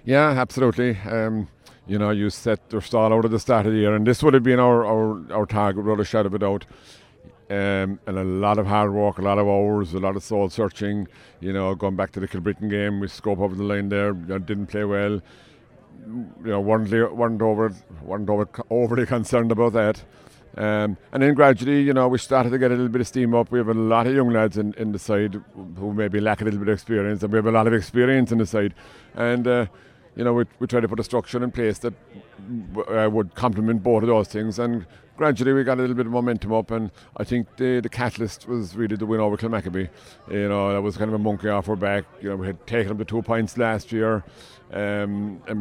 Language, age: English, 60-79